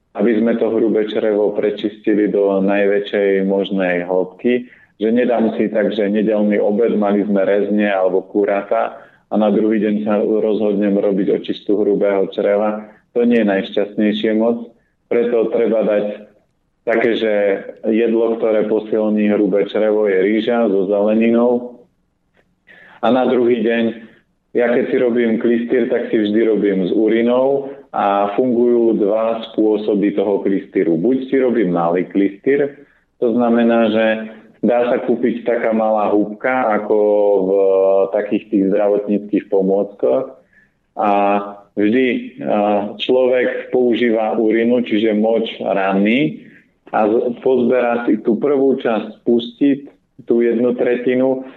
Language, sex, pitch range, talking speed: Slovak, male, 100-120 Hz, 125 wpm